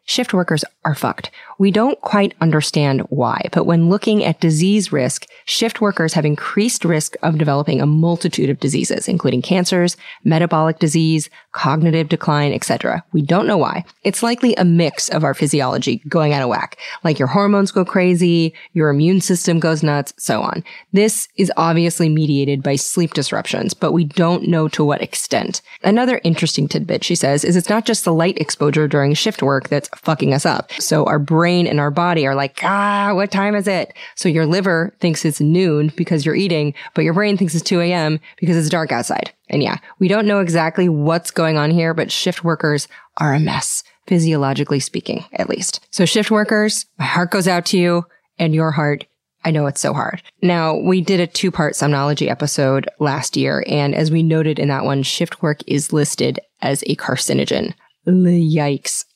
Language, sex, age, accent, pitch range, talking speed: English, female, 30-49, American, 150-185 Hz, 190 wpm